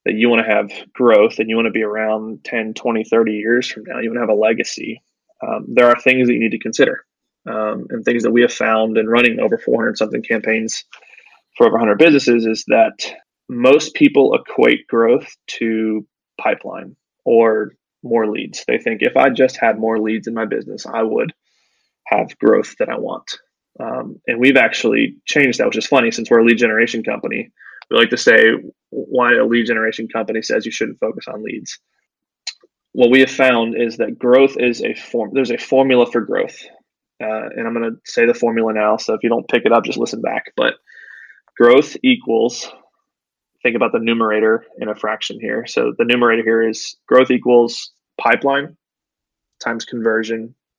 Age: 20-39